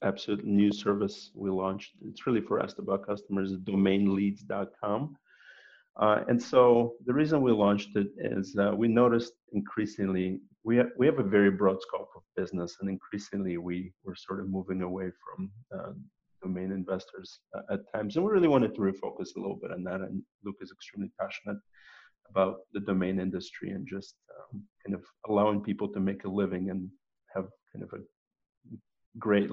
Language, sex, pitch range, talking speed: English, male, 95-110 Hz, 175 wpm